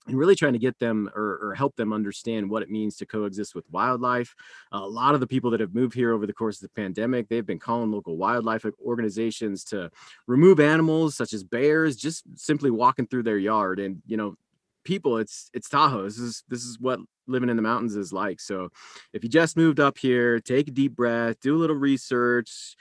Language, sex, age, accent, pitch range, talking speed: English, male, 30-49, American, 110-130 Hz, 220 wpm